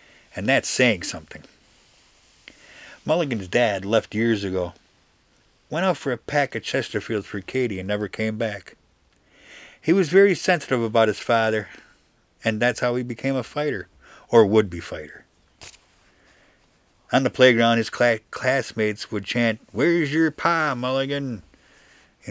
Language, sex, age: English, male, 50-69